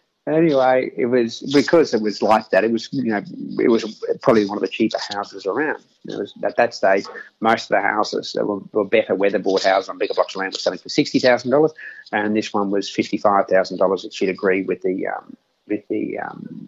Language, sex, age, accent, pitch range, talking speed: English, male, 30-49, Australian, 110-170 Hz, 215 wpm